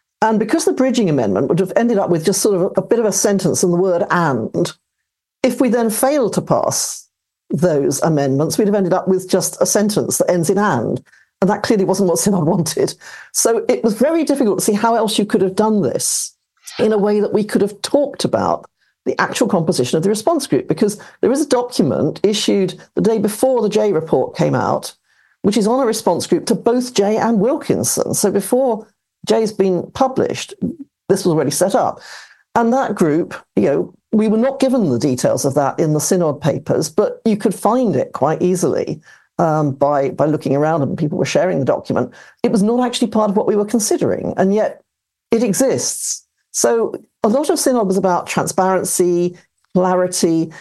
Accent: British